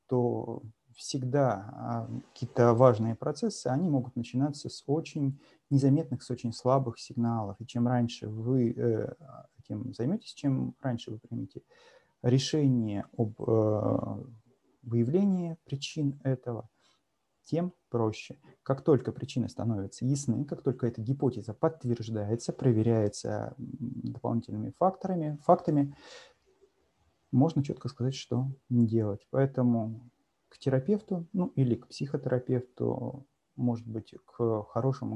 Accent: native